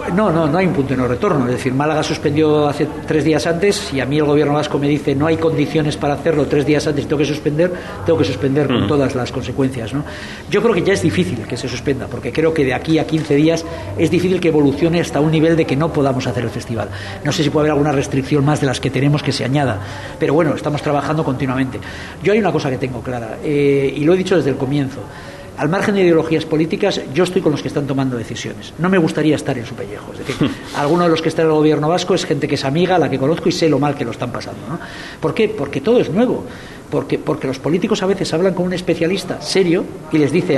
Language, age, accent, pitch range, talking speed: English, 50-69, Spanish, 135-175 Hz, 265 wpm